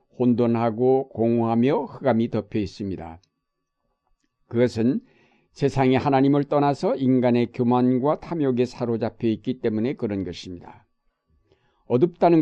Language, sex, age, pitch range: Korean, male, 60-79, 115-140 Hz